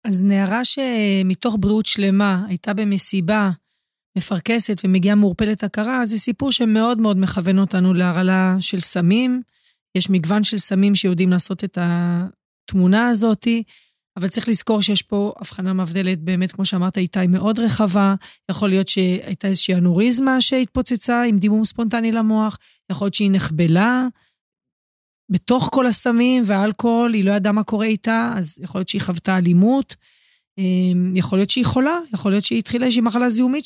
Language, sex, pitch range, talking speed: Hebrew, female, 190-235 Hz, 150 wpm